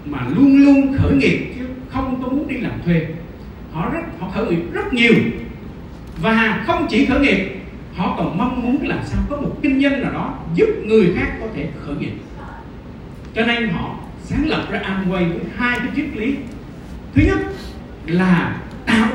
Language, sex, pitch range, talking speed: Vietnamese, male, 185-275 Hz, 190 wpm